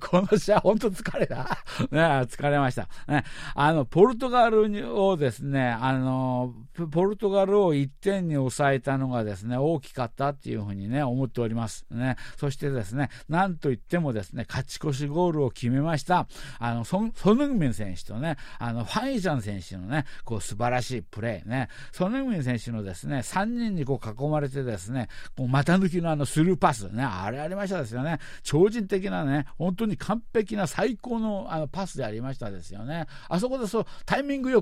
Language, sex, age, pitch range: Japanese, male, 50-69, 120-170 Hz